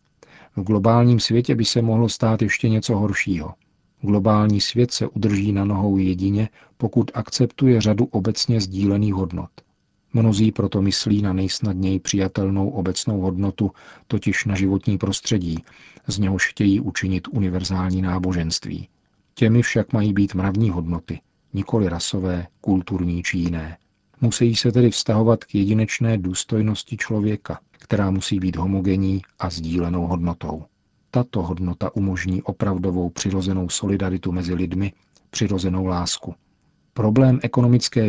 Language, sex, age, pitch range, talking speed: Czech, male, 40-59, 95-110 Hz, 125 wpm